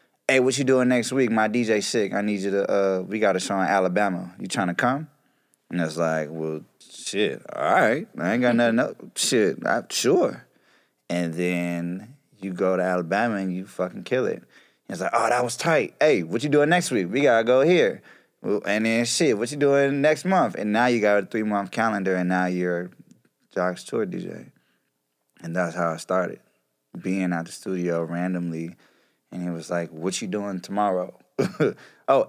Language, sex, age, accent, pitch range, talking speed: English, male, 20-39, American, 90-110 Hz, 205 wpm